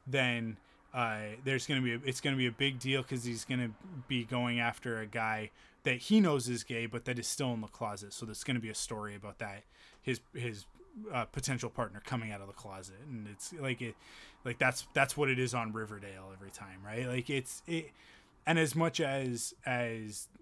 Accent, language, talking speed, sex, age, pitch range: American, English, 215 wpm, male, 20-39, 115-140 Hz